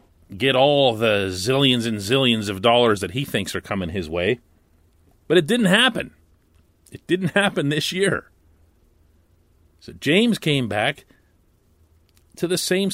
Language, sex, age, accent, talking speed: English, male, 40-59, American, 145 wpm